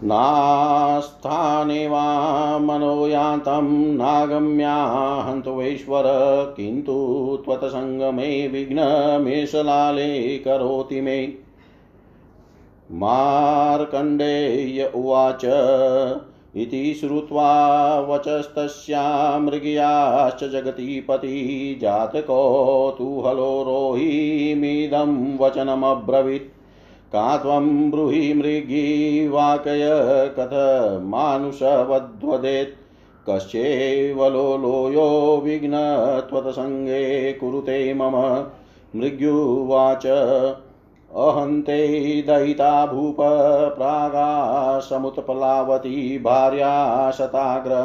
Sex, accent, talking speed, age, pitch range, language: male, native, 45 wpm, 50-69, 135-145 Hz, Hindi